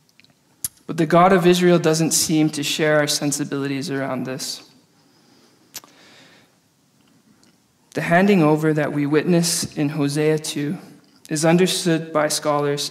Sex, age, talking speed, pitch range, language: male, 20-39, 120 wpm, 145-165 Hz, English